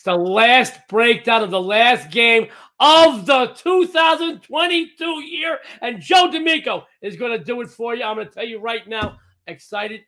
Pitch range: 160-205 Hz